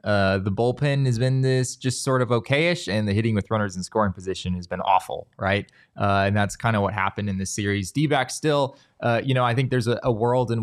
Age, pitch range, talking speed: 20-39, 105-130 Hz, 250 wpm